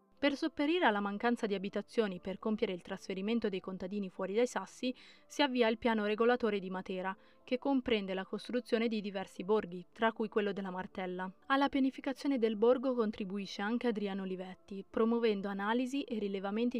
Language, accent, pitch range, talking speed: Italian, native, 195-235 Hz, 165 wpm